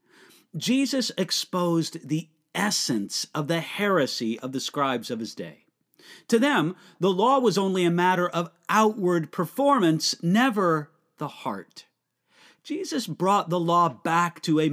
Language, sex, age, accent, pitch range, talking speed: English, male, 40-59, American, 155-205 Hz, 140 wpm